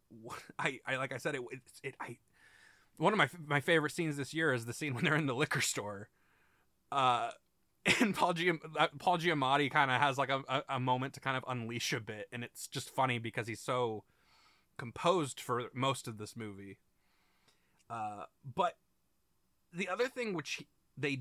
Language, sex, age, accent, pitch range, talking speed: English, male, 20-39, American, 110-145 Hz, 185 wpm